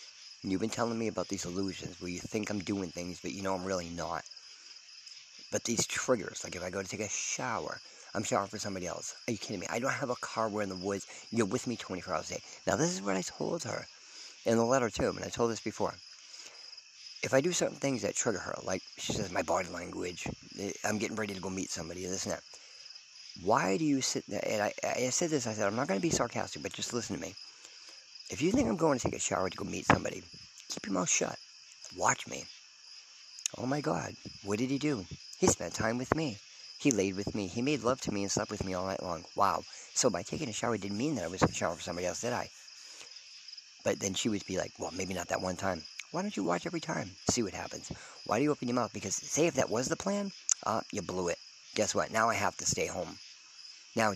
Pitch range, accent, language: 95-120 Hz, American, English